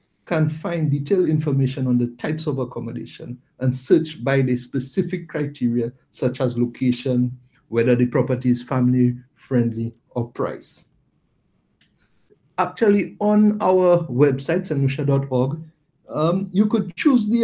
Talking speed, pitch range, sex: 120 wpm, 130-160 Hz, male